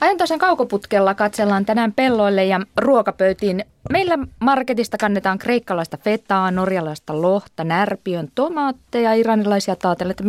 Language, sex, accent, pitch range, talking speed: Finnish, female, native, 165-230 Hz, 105 wpm